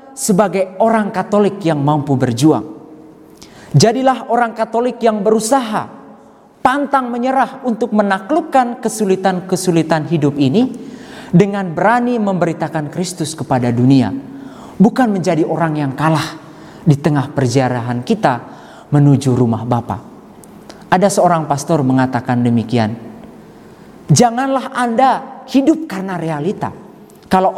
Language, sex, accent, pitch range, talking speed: Indonesian, male, native, 145-230 Hz, 100 wpm